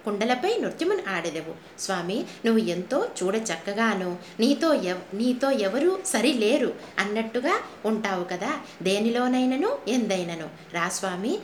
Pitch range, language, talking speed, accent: 185-265 Hz, Telugu, 110 wpm, native